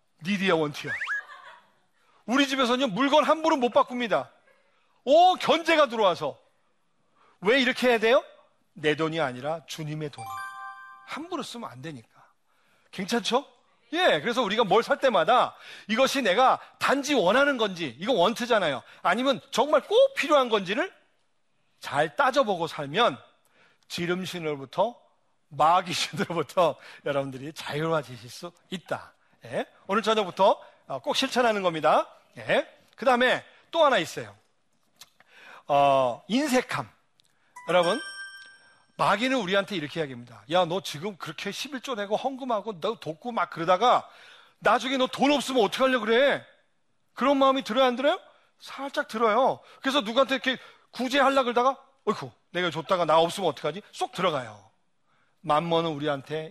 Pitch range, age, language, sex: 165-270 Hz, 40-59, Korean, male